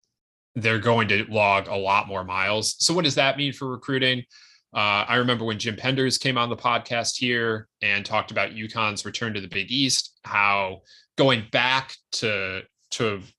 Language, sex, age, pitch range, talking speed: English, male, 20-39, 100-125 Hz, 180 wpm